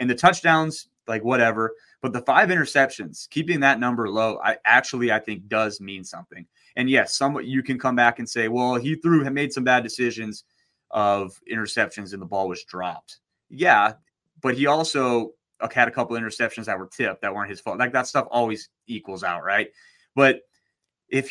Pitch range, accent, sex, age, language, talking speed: 110-135 Hz, American, male, 30-49, English, 195 wpm